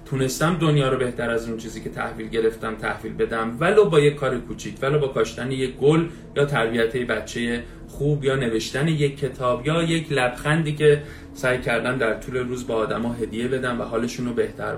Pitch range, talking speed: 120-150 Hz, 195 wpm